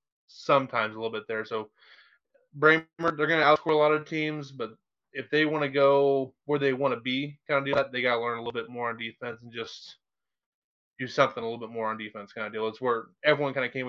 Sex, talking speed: male, 255 wpm